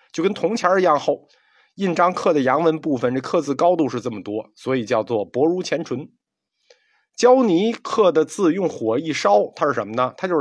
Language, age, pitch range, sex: Chinese, 50-69, 125-190 Hz, male